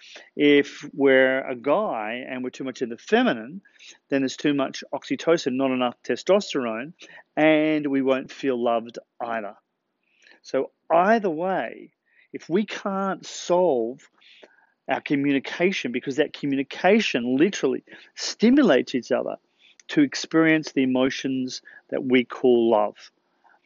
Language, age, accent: English, 40-59, Australian